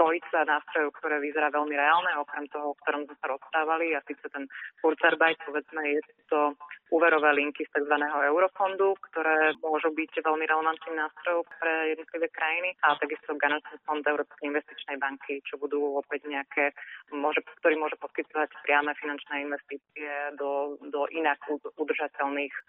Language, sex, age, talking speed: Slovak, female, 30-49, 150 wpm